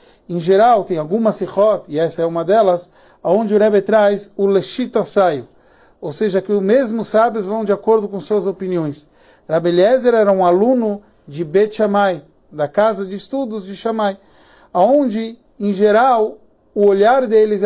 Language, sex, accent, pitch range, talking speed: Portuguese, male, Brazilian, 185-220 Hz, 165 wpm